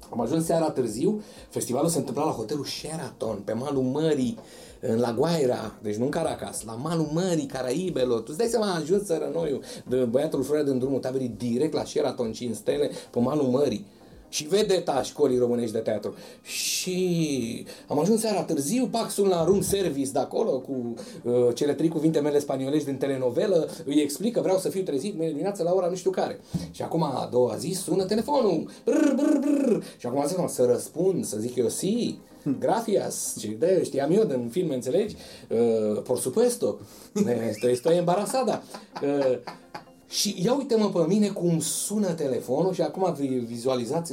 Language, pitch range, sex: Romanian, 130-200 Hz, male